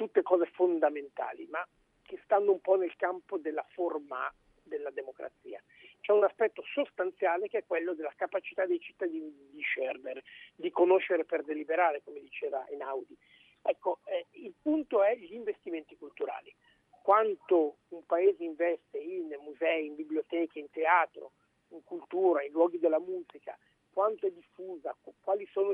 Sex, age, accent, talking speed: male, 50-69, native, 145 wpm